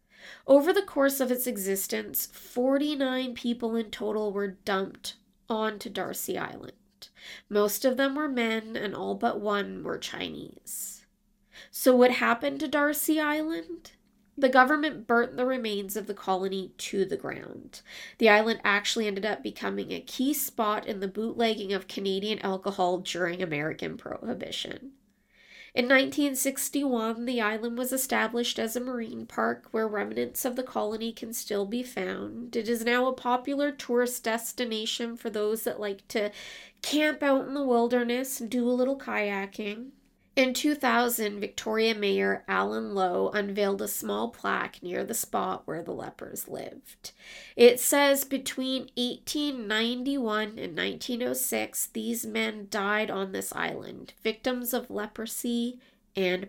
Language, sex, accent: English, female, American